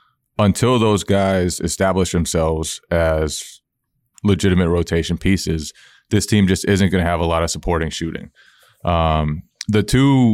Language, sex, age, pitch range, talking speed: English, male, 20-39, 85-100 Hz, 140 wpm